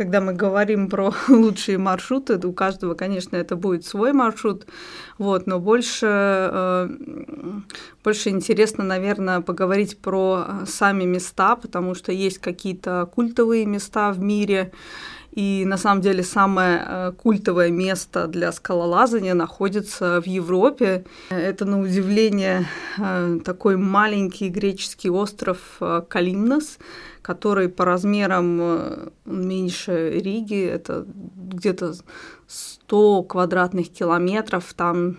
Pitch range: 180-210 Hz